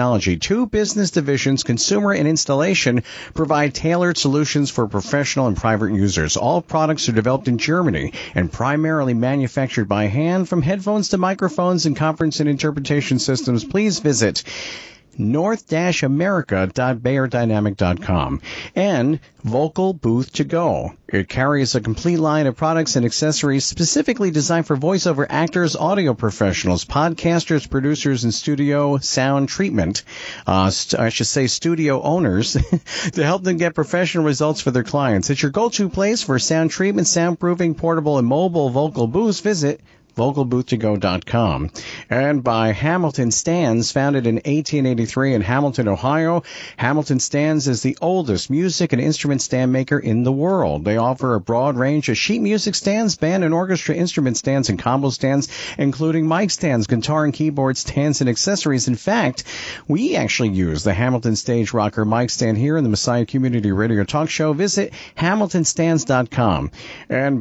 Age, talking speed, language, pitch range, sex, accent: 50-69, 150 wpm, English, 120-165 Hz, male, American